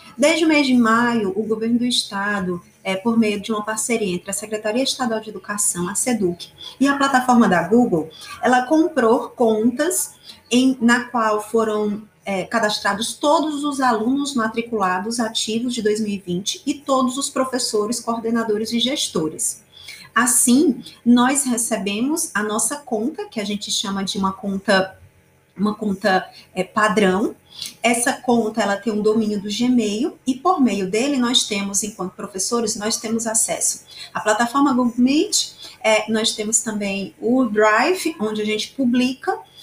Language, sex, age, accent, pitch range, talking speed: Portuguese, female, 30-49, Brazilian, 205-250 Hz, 145 wpm